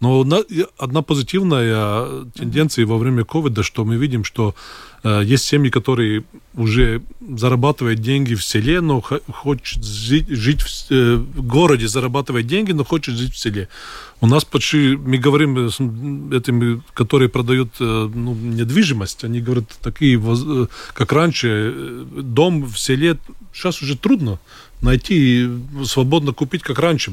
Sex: male